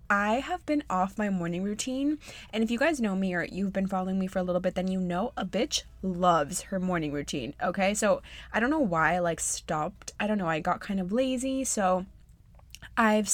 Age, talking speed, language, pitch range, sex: 20-39, 225 wpm, English, 185-225 Hz, female